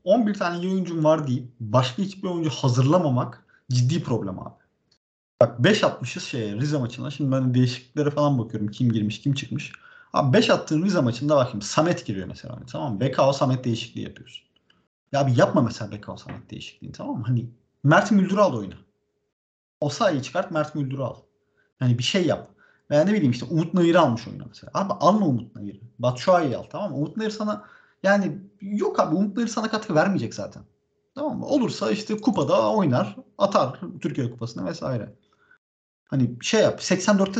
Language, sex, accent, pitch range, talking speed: Turkish, male, native, 125-185 Hz, 170 wpm